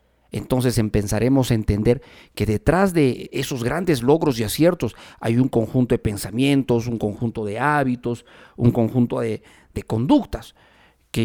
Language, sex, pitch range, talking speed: Spanish, male, 115-150 Hz, 145 wpm